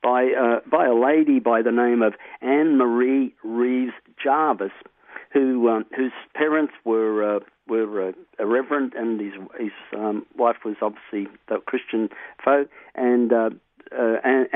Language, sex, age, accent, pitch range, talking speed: English, male, 50-69, Australian, 110-125 Hz, 140 wpm